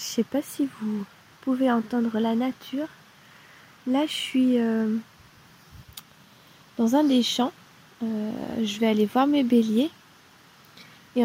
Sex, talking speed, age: female, 140 wpm, 20-39